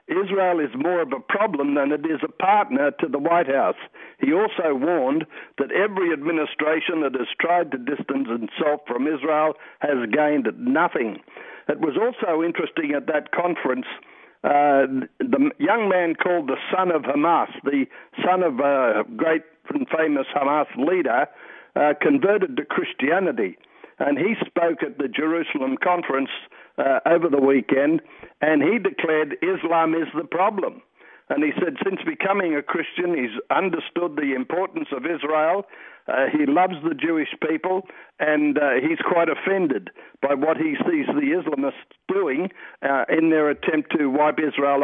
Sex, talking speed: male, 160 wpm